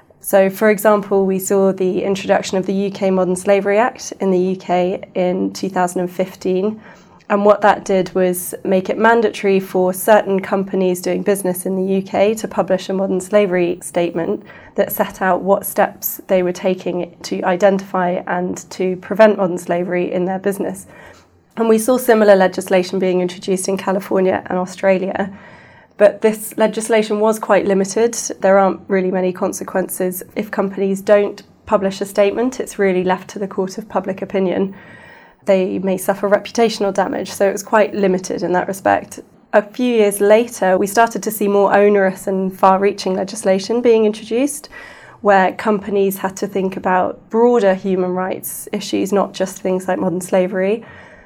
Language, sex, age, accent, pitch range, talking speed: English, female, 20-39, British, 185-205 Hz, 165 wpm